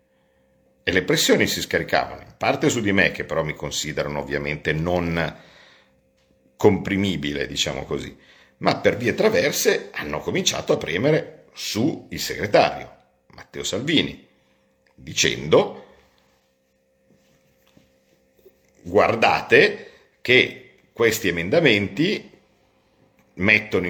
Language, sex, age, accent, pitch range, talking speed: Italian, male, 50-69, native, 65-95 Hz, 95 wpm